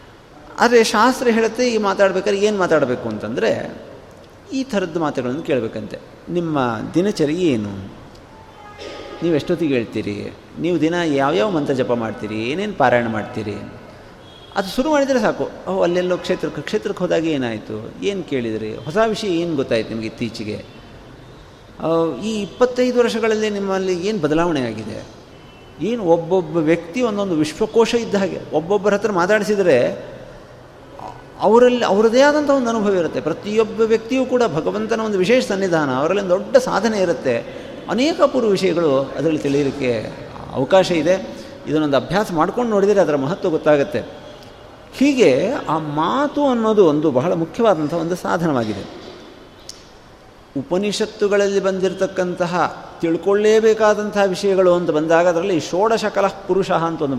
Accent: native